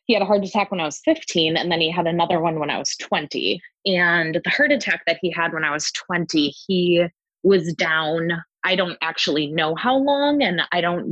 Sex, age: female, 20-39